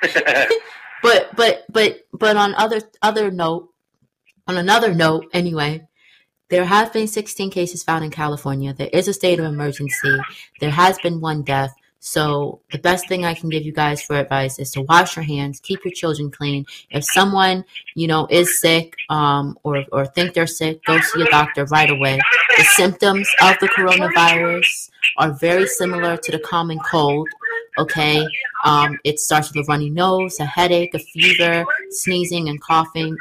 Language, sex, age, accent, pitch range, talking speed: English, female, 30-49, American, 155-190 Hz, 175 wpm